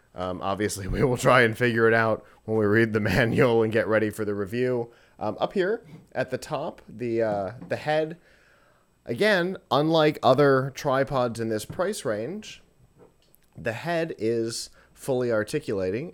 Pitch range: 95-125 Hz